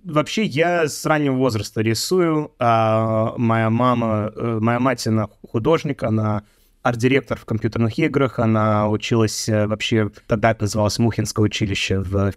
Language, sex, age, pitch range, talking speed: Russian, male, 20-39, 110-140 Hz, 135 wpm